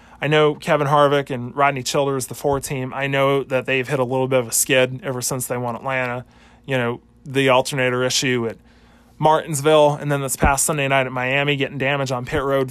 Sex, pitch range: male, 125-155 Hz